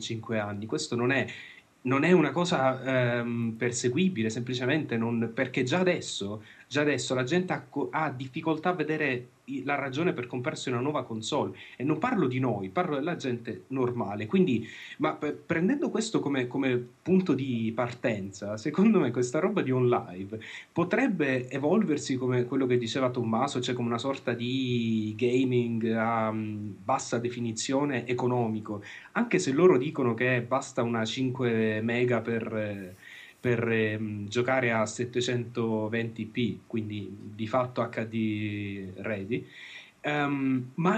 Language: Italian